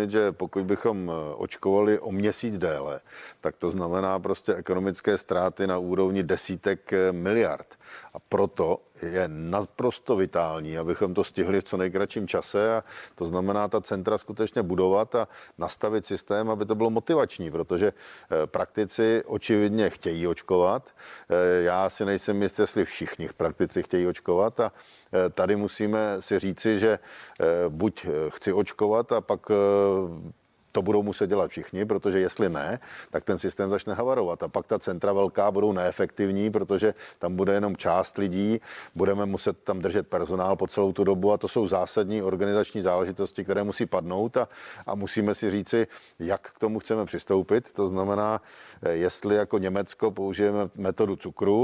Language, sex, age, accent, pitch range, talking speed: Czech, male, 50-69, native, 95-105 Hz, 150 wpm